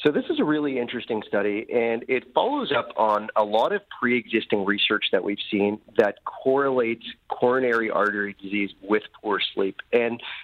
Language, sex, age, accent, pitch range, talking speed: English, male, 30-49, American, 105-120 Hz, 165 wpm